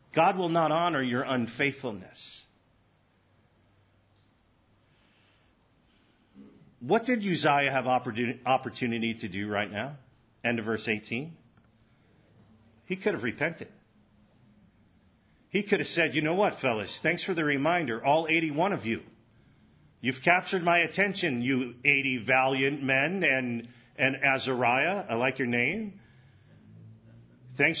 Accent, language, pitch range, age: American, English, 110-155 Hz, 40-59